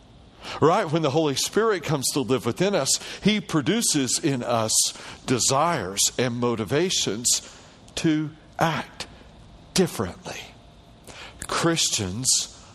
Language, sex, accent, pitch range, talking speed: English, male, American, 115-170 Hz, 100 wpm